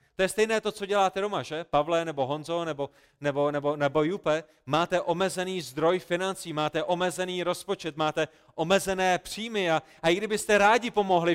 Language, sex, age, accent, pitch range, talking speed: Czech, male, 30-49, native, 135-170 Hz, 165 wpm